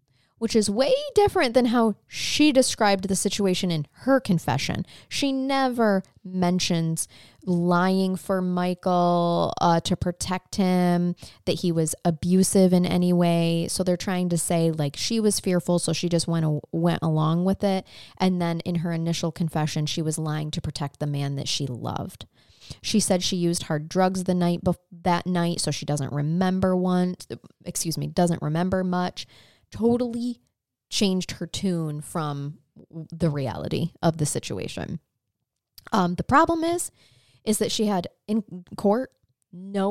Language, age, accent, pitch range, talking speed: English, 20-39, American, 165-205 Hz, 160 wpm